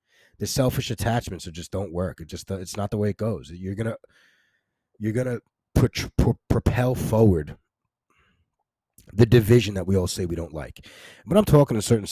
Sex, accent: male, American